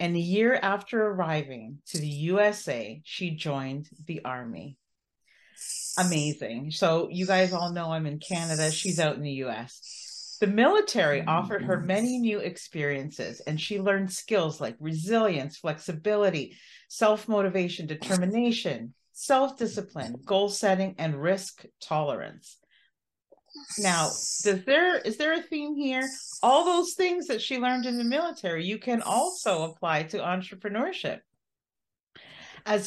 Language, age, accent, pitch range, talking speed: English, 40-59, American, 160-225 Hz, 130 wpm